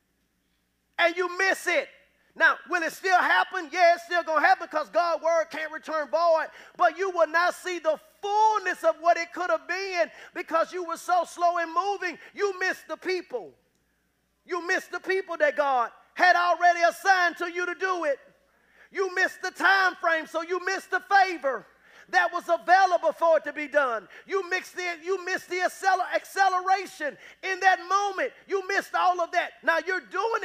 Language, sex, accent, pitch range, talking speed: English, male, American, 305-370 Hz, 180 wpm